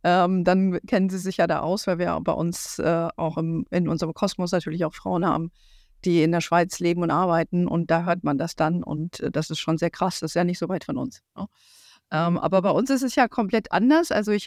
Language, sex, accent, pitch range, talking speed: German, female, German, 175-215 Hz, 235 wpm